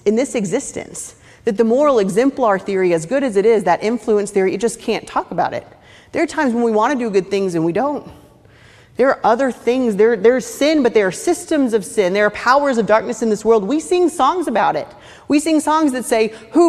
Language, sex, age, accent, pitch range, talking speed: English, female, 30-49, American, 165-230 Hz, 235 wpm